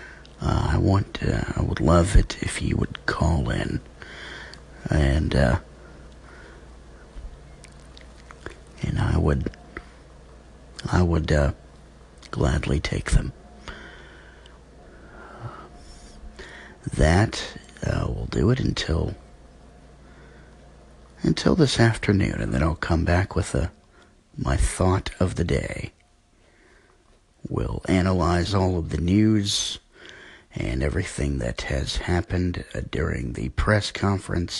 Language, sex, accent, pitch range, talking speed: English, male, American, 70-105 Hz, 110 wpm